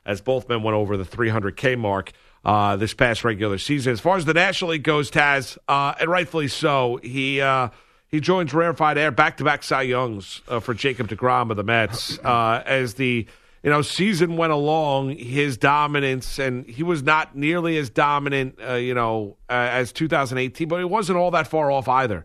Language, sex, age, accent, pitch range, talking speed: English, male, 50-69, American, 115-145 Hz, 195 wpm